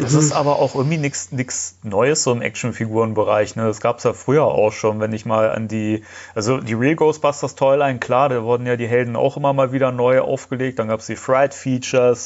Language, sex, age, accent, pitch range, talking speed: German, male, 30-49, German, 115-140 Hz, 225 wpm